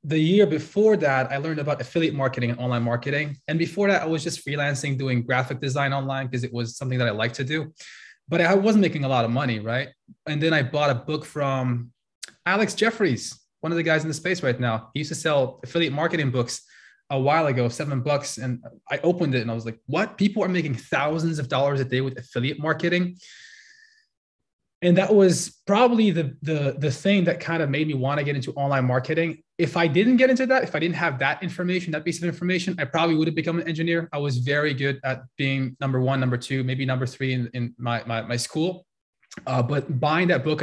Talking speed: 230 wpm